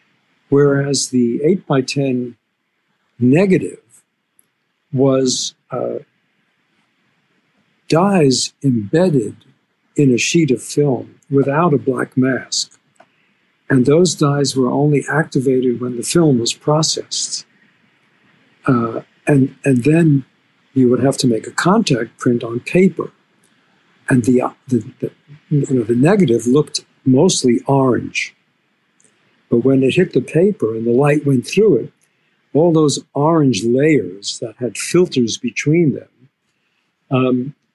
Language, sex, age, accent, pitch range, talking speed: English, male, 60-79, American, 125-150 Hz, 125 wpm